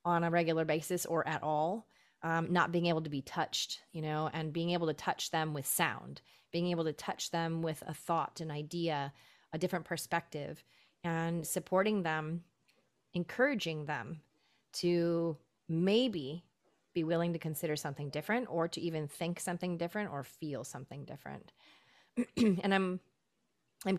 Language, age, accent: English, 30-49, American